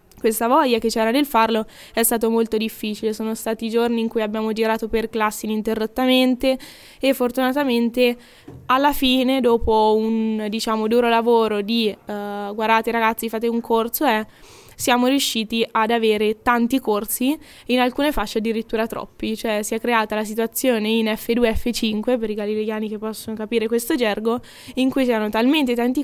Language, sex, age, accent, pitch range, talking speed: Italian, female, 20-39, native, 220-240 Hz, 160 wpm